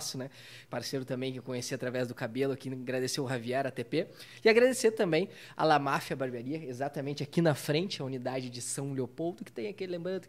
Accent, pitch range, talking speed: Brazilian, 130-165 Hz, 200 wpm